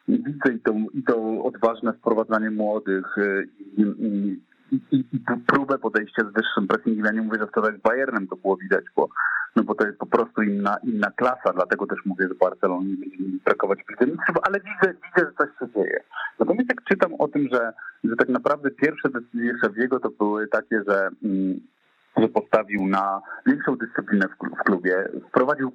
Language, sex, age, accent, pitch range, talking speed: Polish, male, 40-59, native, 105-145 Hz, 185 wpm